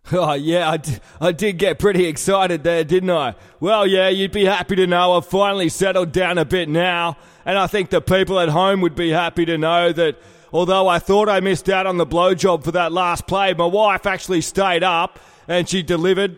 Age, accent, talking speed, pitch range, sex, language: 30-49, Australian, 215 wpm, 165-190 Hz, male, English